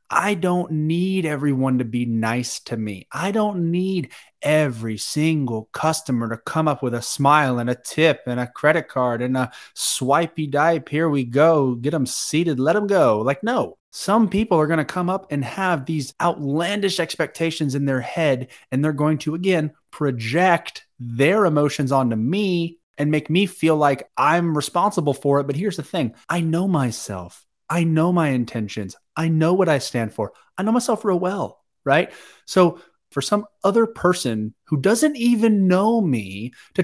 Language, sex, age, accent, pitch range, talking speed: English, male, 20-39, American, 130-175 Hz, 180 wpm